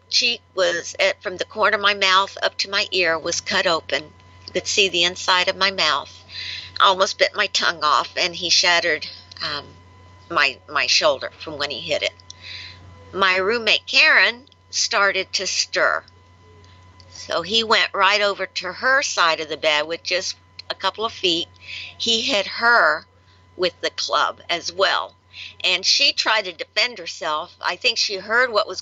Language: English